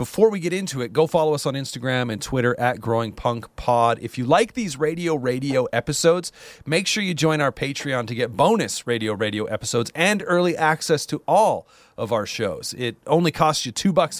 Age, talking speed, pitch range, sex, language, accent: 40-59, 200 wpm, 115-155 Hz, male, English, American